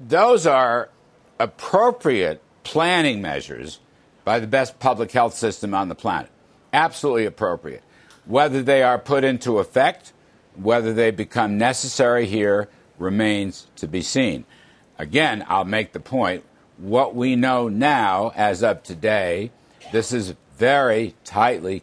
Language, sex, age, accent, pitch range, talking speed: English, male, 60-79, American, 100-130 Hz, 130 wpm